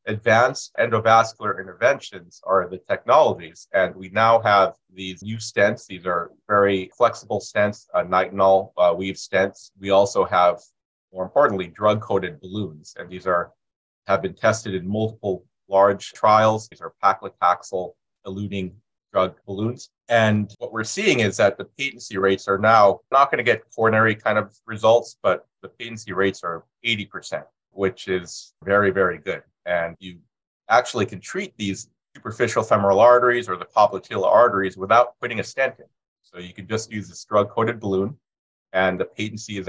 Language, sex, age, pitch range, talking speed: English, male, 30-49, 95-110 Hz, 160 wpm